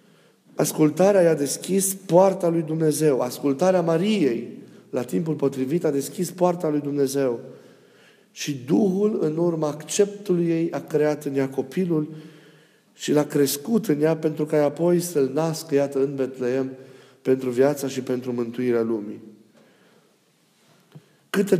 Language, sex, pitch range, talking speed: Romanian, male, 135-175 Hz, 130 wpm